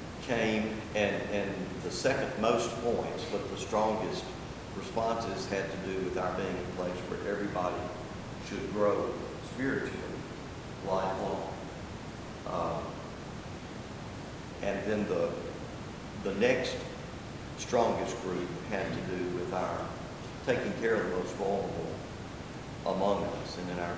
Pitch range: 90-105 Hz